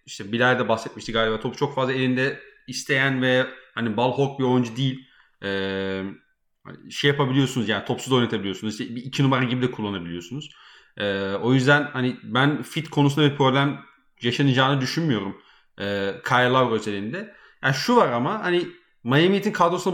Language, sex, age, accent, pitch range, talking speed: Turkish, male, 30-49, native, 115-145 Hz, 155 wpm